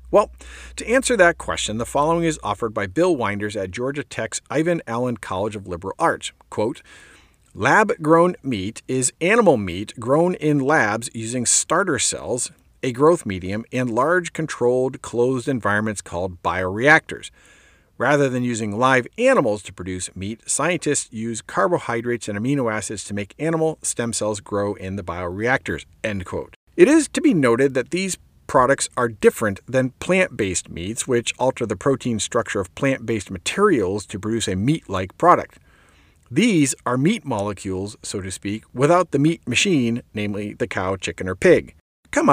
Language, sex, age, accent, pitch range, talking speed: English, male, 50-69, American, 100-150 Hz, 160 wpm